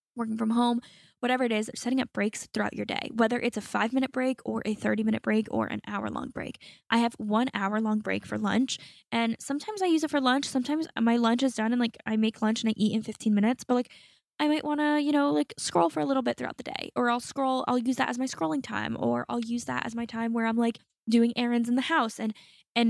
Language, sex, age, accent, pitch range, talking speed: English, female, 10-29, American, 210-255 Hz, 260 wpm